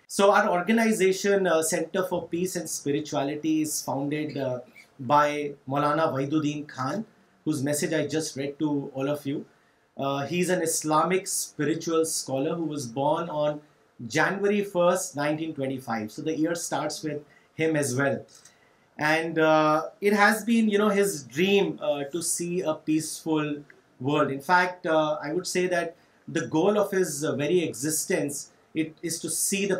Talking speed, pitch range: 160 wpm, 145-175 Hz